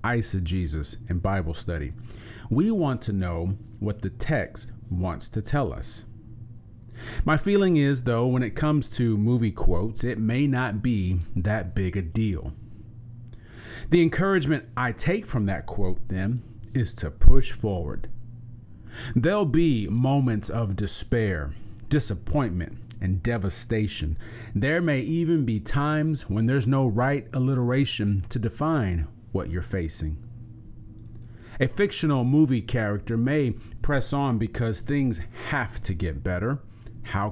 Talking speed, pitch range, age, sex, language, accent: 130 wpm, 105-130 Hz, 40-59, male, English, American